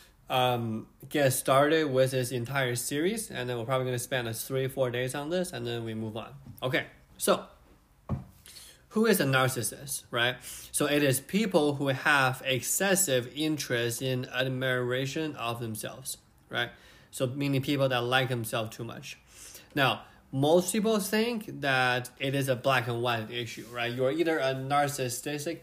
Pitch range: 120-150 Hz